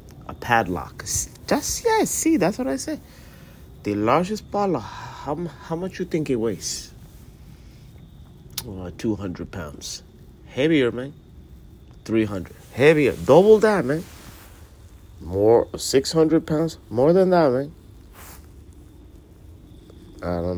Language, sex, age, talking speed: English, male, 50-69, 120 wpm